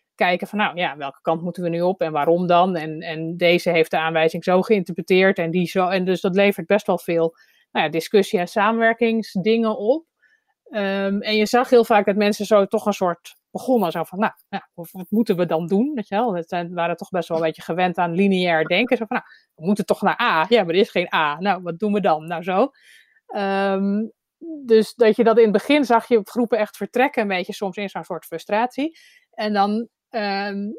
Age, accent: 30-49, Dutch